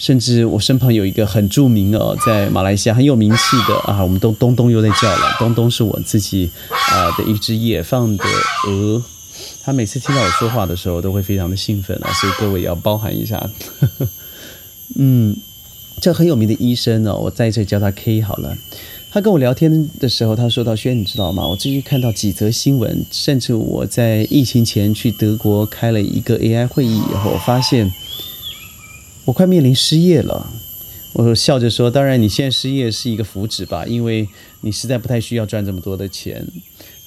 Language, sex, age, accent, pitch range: Chinese, male, 30-49, native, 100-130 Hz